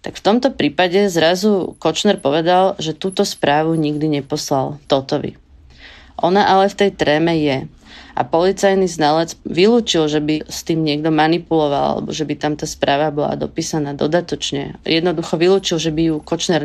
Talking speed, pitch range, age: 160 wpm, 155-190 Hz, 30-49